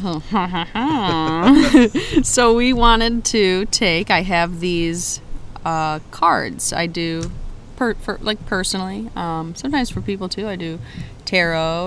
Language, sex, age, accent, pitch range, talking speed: English, female, 30-49, American, 155-185 Hz, 110 wpm